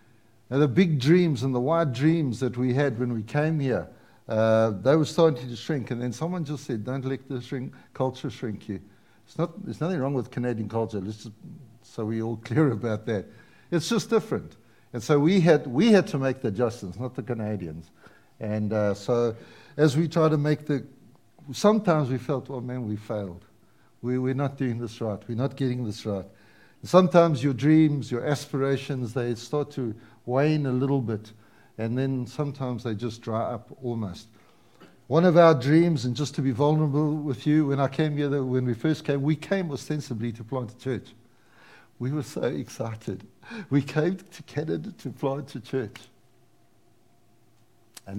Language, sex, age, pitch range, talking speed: English, male, 60-79, 115-145 Hz, 190 wpm